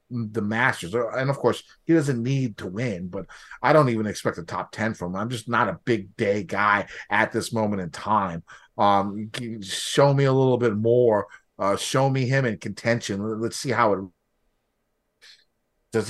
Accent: American